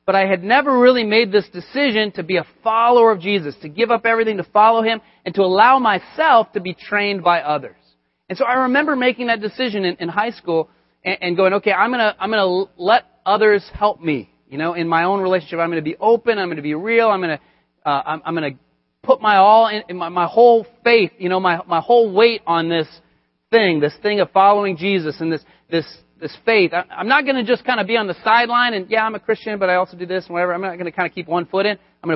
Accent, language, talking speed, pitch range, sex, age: American, English, 260 wpm, 165-225 Hz, male, 30-49